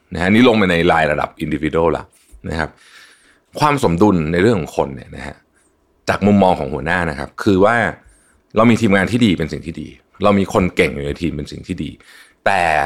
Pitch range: 75-100 Hz